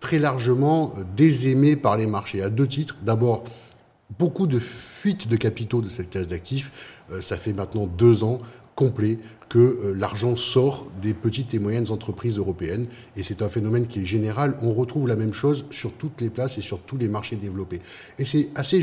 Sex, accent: male, French